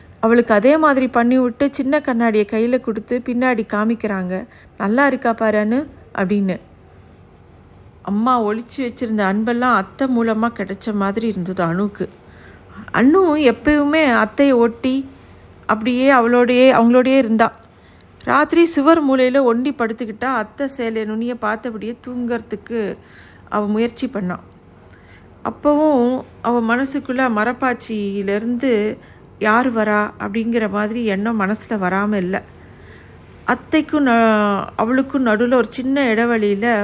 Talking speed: 105 wpm